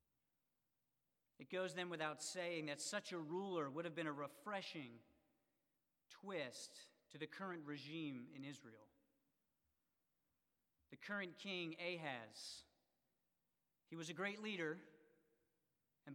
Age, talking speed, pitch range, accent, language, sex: 40-59, 115 wpm, 145-170 Hz, American, English, male